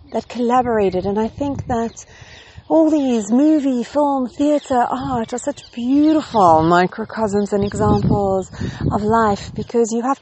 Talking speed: 135 wpm